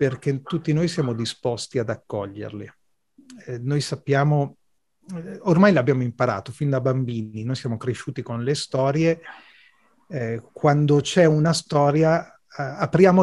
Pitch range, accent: 140-190 Hz, native